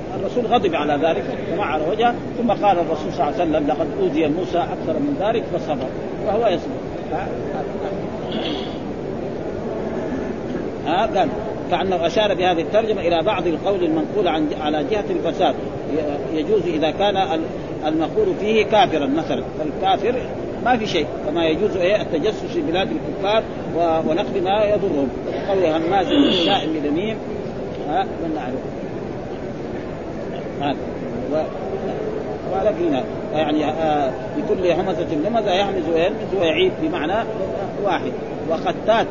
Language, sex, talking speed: Arabic, male, 125 wpm